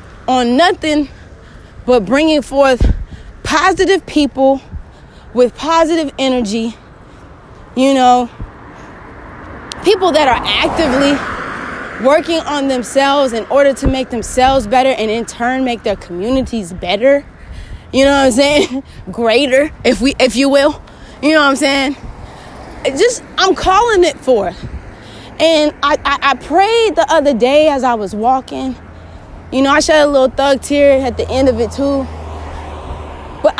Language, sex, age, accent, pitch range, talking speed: English, female, 20-39, American, 250-305 Hz, 140 wpm